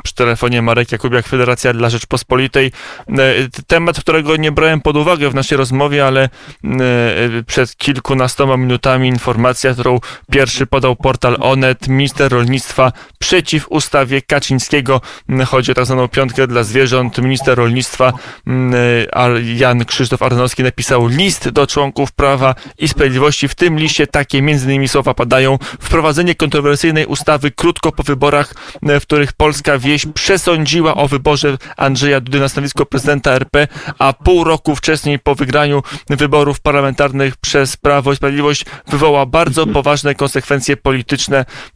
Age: 20-39